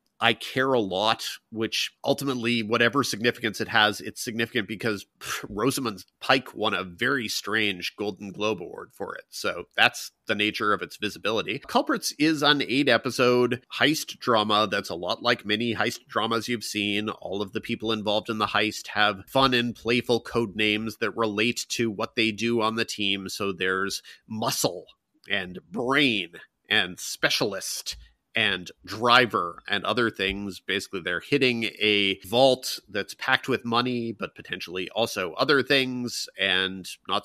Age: 30-49